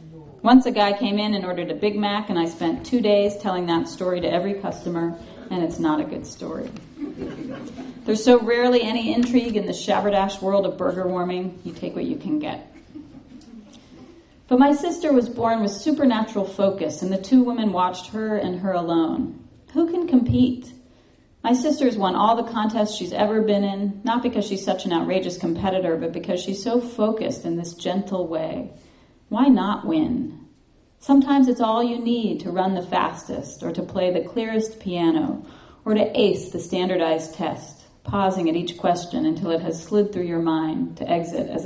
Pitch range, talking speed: 180-240 Hz, 185 wpm